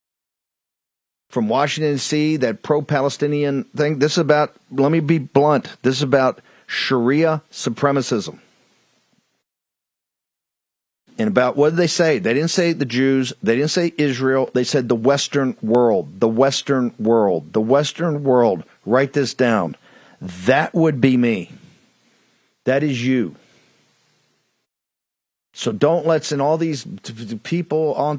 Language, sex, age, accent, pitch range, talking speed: English, male, 50-69, American, 130-160 Hz, 130 wpm